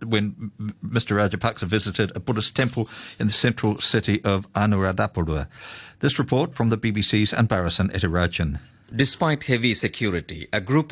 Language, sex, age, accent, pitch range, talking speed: English, male, 50-69, Indian, 100-135 Hz, 145 wpm